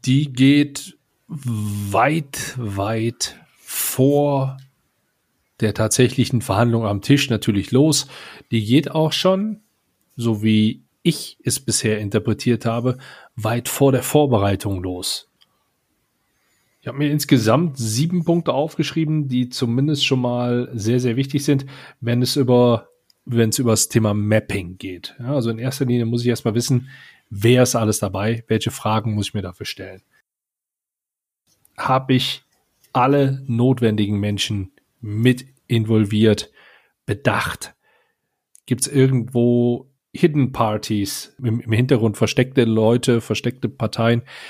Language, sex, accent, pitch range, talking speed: German, male, German, 110-135 Hz, 125 wpm